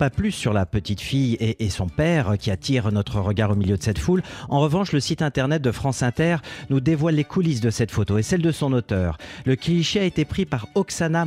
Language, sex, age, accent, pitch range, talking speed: French, male, 40-59, French, 110-140 Hz, 245 wpm